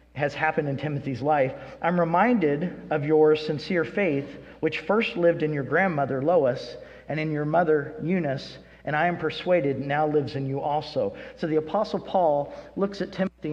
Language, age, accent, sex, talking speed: English, 50-69, American, male, 175 wpm